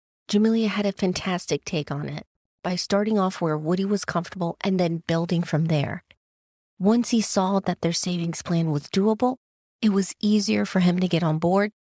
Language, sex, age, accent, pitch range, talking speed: English, female, 30-49, American, 160-200 Hz, 185 wpm